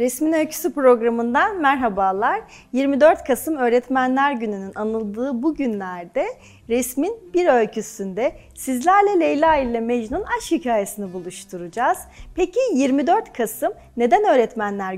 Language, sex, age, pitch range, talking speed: Turkish, female, 40-59, 210-285 Hz, 105 wpm